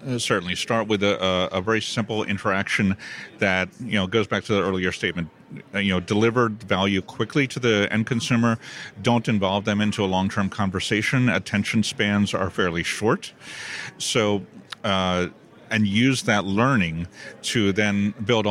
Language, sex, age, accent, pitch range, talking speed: English, male, 40-59, American, 95-115 Hz, 155 wpm